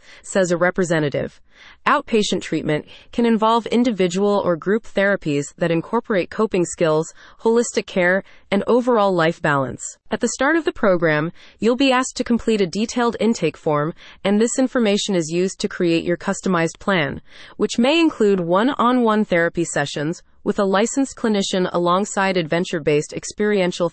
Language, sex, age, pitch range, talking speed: English, female, 30-49, 170-230 Hz, 150 wpm